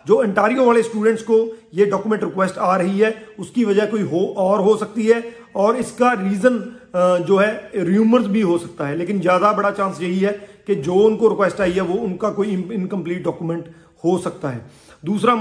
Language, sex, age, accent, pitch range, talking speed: Hindi, male, 40-59, native, 190-225 Hz, 195 wpm